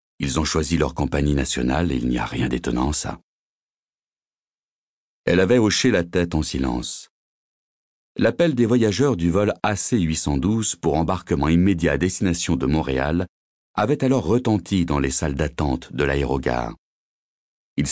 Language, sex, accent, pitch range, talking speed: French, male, French, 70-95 Hz, 145 wpm